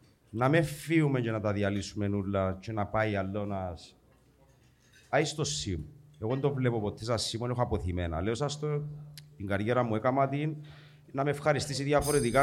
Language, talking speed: Greek, 165 wpm